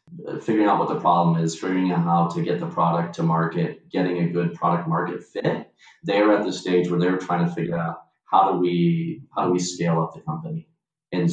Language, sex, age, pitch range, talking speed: English, male, 30-49, 85-100 Hz, 220 wpm